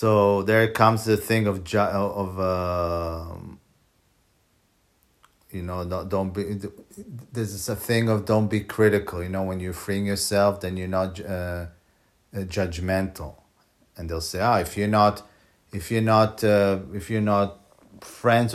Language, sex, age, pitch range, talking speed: English, male, 40-59, 90-105 Hz, 150 wpm